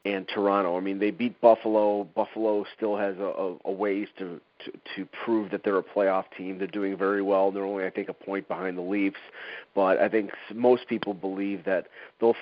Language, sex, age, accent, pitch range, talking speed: English, male, 40-59, American, 95-110 Hz, 215 wpm